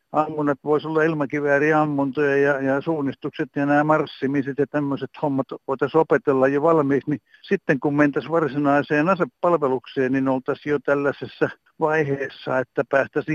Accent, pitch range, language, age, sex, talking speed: native, 120-145 Hz, Finnish, 60-79, male, 135 wpm